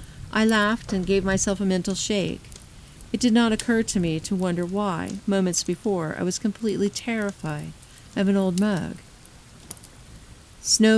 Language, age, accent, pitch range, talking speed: English, 50-69, American, 165-195 Hz, 155 wpm